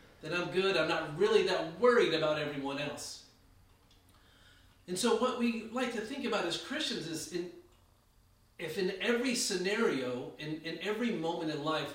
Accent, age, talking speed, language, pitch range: American, 40-59, 160 wpm, English, 145-185 Hz